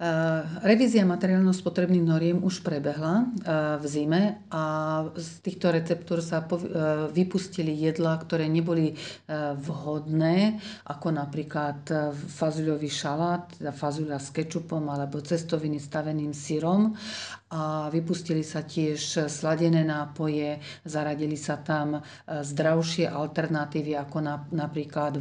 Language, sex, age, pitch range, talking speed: Slovak, female, 40-59, 150-170 Hz, 100 wpm